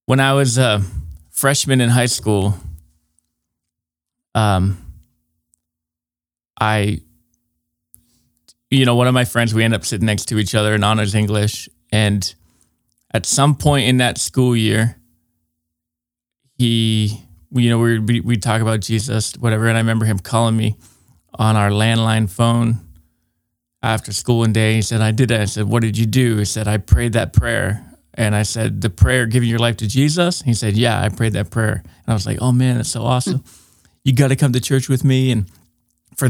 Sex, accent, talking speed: male, American, 185 wpm